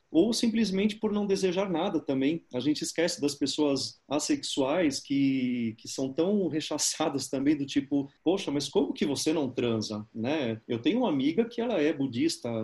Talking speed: 175 wpm